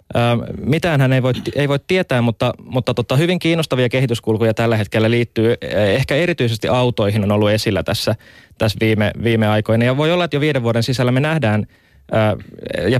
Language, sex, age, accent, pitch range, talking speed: Finnish, male, 20-39, native, 110-125 Hz, 175 wpm